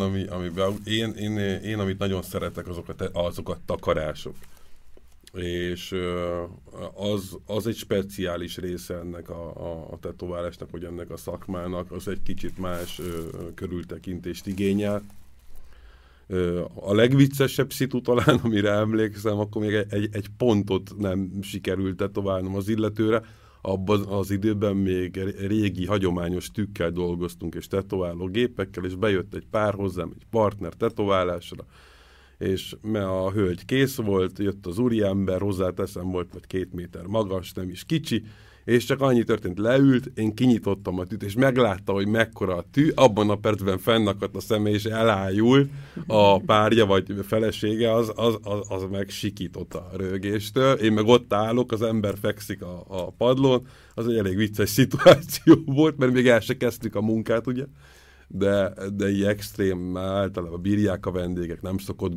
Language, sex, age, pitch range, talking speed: Hungarian, male, 50-69, 90-110 Hz, 145 wpm